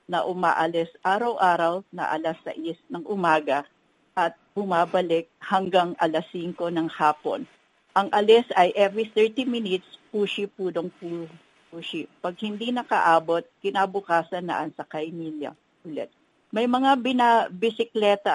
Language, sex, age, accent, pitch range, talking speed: Filipino, female, 50-69, native, 170-205 Hz, 120 wpm